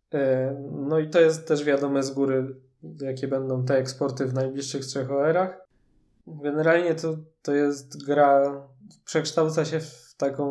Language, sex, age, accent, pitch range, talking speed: Polish, male, 20-39, native, 130-150 Hz, 145 wpm